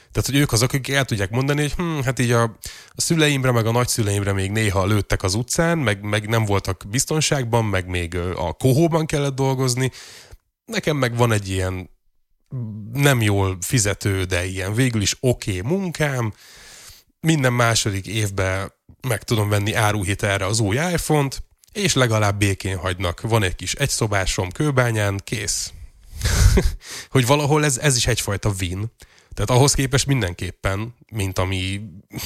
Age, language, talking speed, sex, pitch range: 20-39, Hungarian, 155 wpm, male, 95-130 Hz